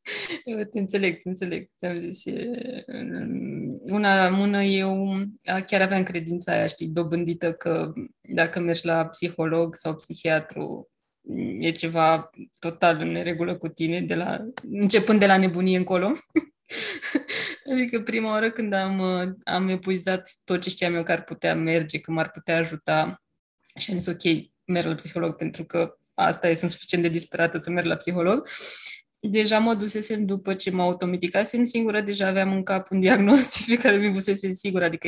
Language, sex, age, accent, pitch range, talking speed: Romanian, female, 20-39, native, 175-210 Hz, 165 wpm